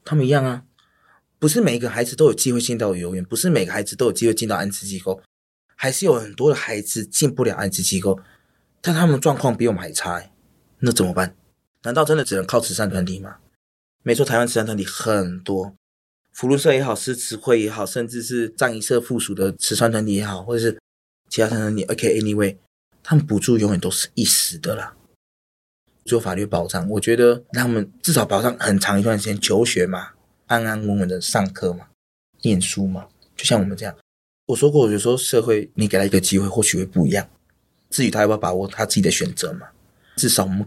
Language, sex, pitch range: Chinese, male, 95-120 Hz